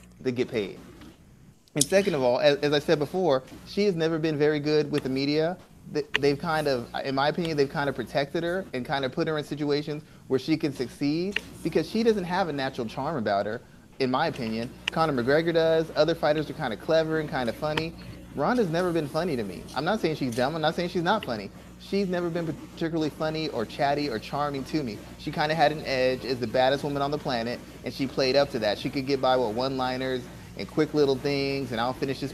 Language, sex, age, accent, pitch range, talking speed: English, male, 30-49, American, 130-160 Hz, 240 wpm